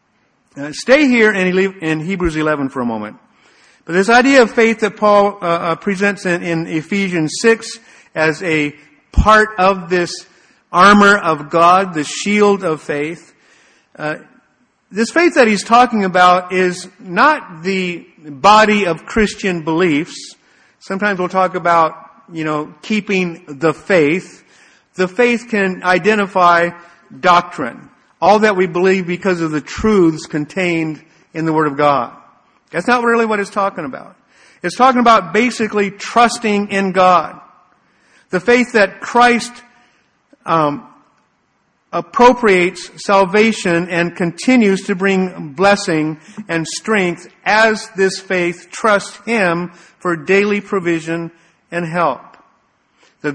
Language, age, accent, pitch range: English, 50-69, American, 170-215 Hz